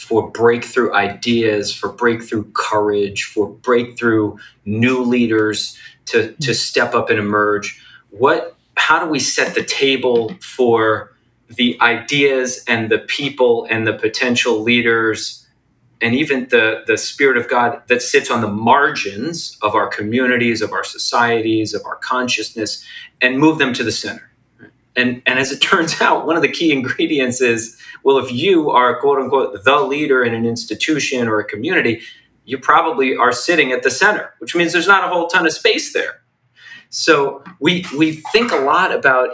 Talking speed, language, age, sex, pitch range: 165 wpm, English, 30-49, male, 110-135 Hz